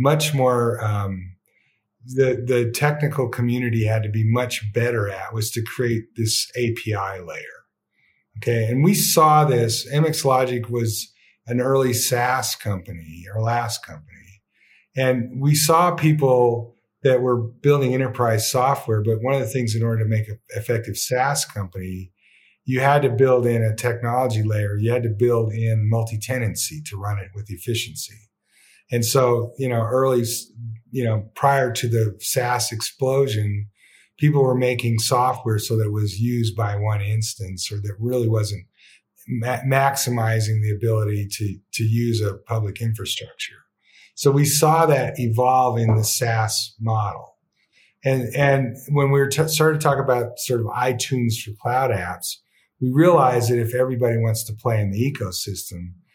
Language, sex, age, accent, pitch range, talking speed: English, male, 40-59, American, 110-130 Hz, 155 wpm